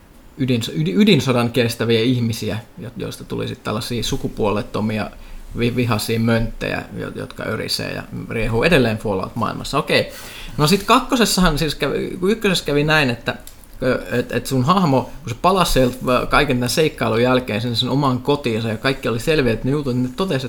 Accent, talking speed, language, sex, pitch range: native, 145 wpm, Finnish, male, 120-150 Hz